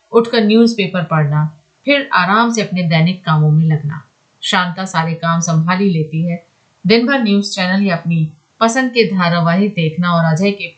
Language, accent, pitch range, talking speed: Hindi, native, 155-200 Hz, 180 wpm